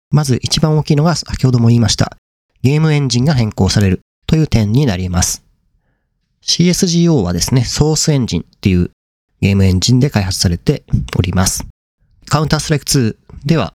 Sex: male